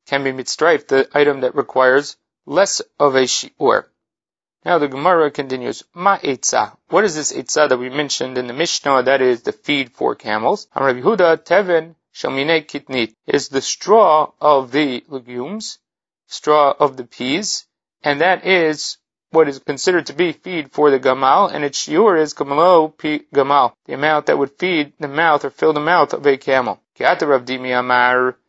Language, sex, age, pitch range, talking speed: English, male, 30-49, 130-155 Hz, 175 wpm